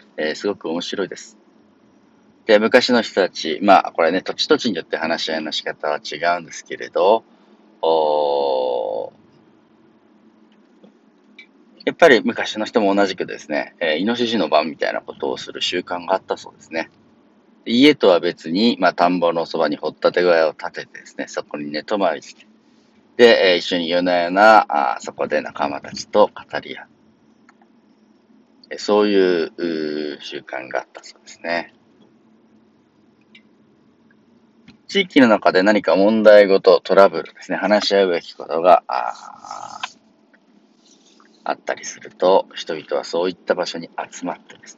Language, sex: Japanese, male